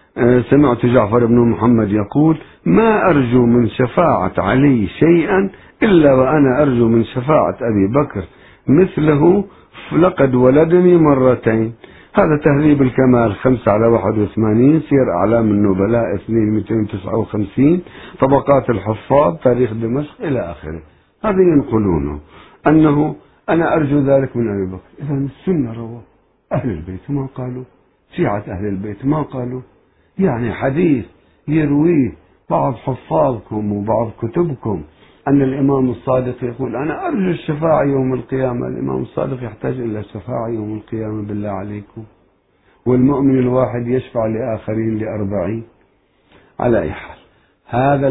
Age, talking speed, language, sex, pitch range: 60-79, 115 wpm, Arabic, male, 110-140 Hz